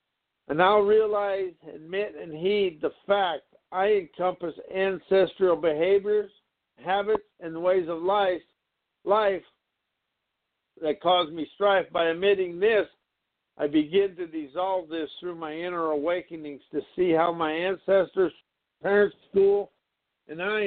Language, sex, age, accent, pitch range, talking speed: English, male, 60-79, American, 165-200 Hz, 125 wpm